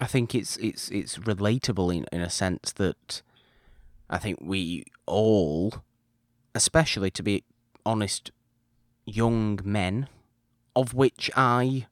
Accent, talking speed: British, 120 wpm